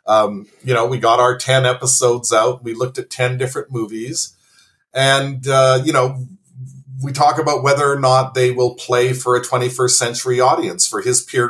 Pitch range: 120-145 Hz